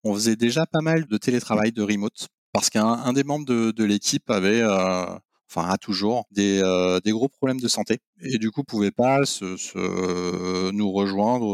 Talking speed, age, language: 205 wpm, 30-49, French